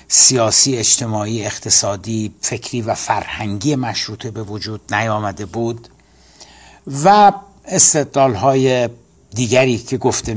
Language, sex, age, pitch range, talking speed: Persian, male, 60-79, 110-130 Hz, 95 wpm